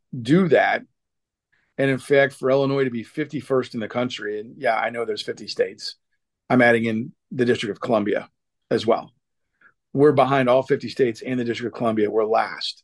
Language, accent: English, American